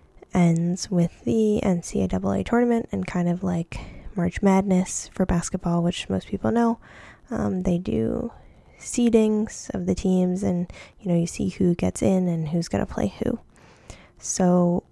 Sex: female